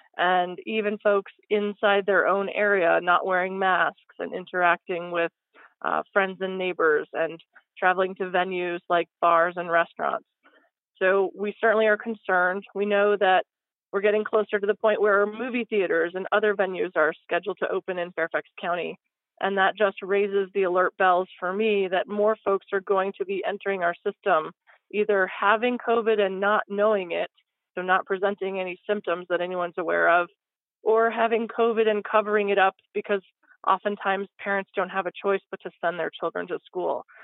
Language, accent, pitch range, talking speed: English, American, 185-215 Hz, 175 wpm